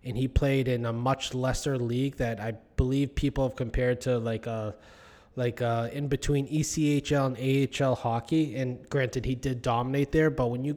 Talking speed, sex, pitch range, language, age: 190 wpm, male, 120-150 Hz, English, 20-39